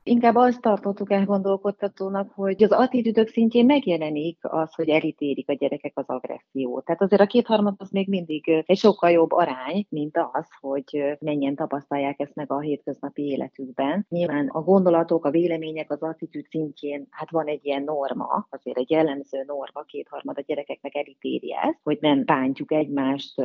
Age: 30-49